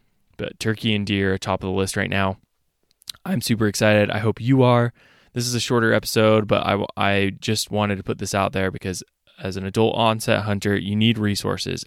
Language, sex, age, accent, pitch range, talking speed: English, male, 20-39, American, 100-110 Hz, 210 wpm